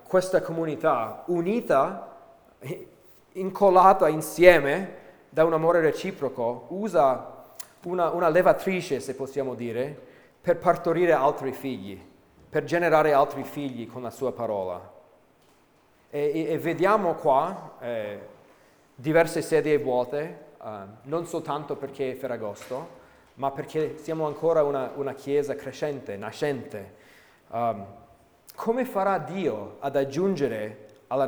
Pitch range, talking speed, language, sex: 125-165 Hz, 110 wpm, Italian, male